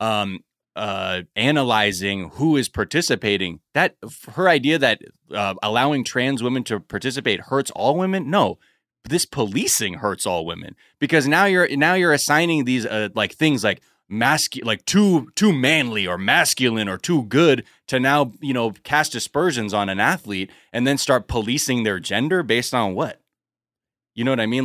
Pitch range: 100-135 Hz